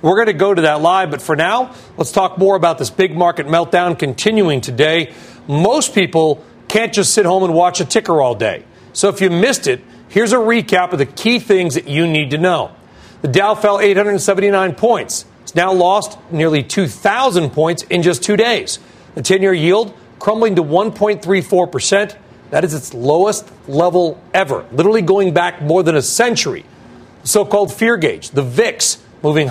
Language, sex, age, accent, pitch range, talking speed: English, male, 40-59, American, 160-205 Hz, 185 wpm